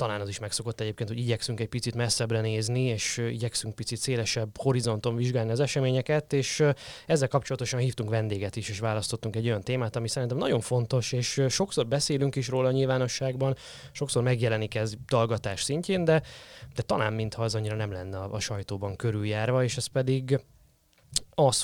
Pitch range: 105-125 Hz